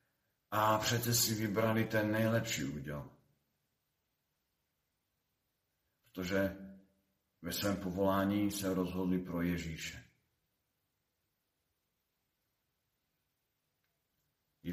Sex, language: male, Slovak